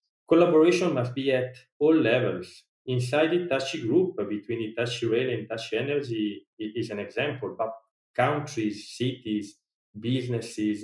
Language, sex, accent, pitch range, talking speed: English, male, Italian, 110-130 Hz, 135 wpm